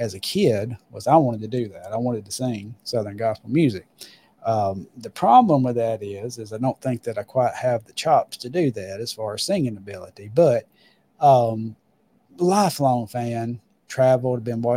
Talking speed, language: 185 wpm, English